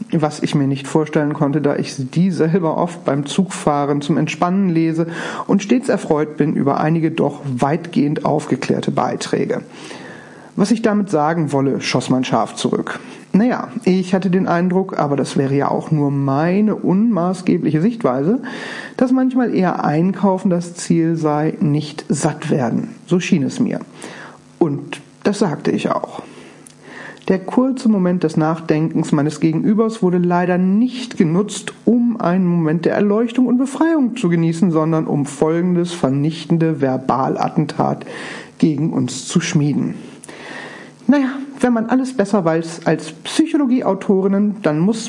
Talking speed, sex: 140 wpm, male